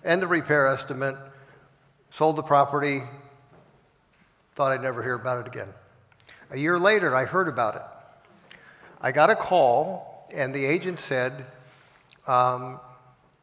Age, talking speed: 60-79, 135 wpm